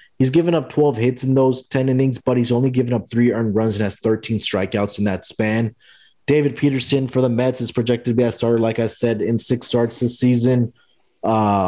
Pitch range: 105-125 Hz